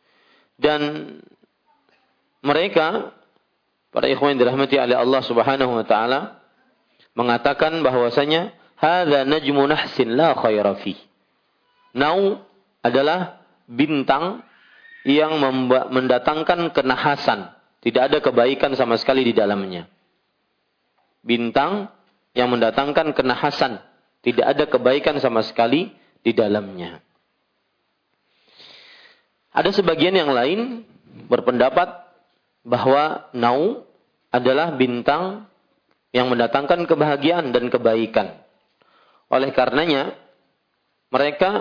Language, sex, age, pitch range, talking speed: Malay, male, 40-59, 125-155 Hz, 85 wpm